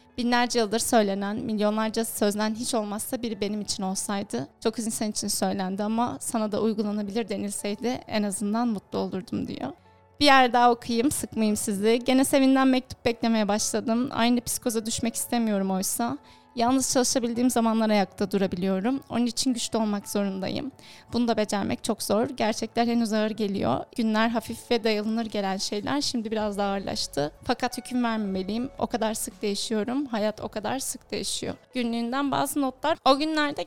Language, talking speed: Turkish, 155 wpm